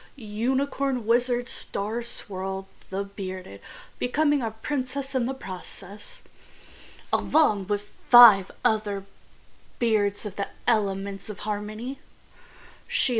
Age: 30-49